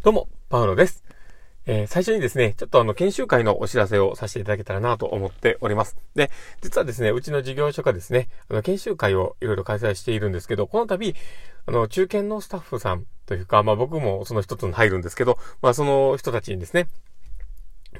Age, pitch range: 40-59, 105-150 Hz